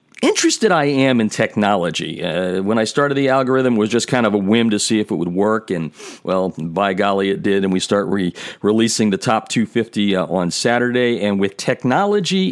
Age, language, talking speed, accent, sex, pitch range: 50-69, English, 205 wpm, American, male, 100-130 Hz